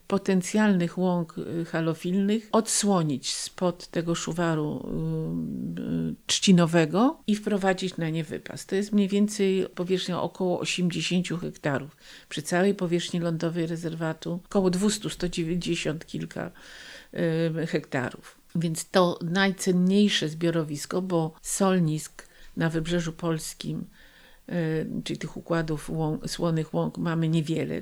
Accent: native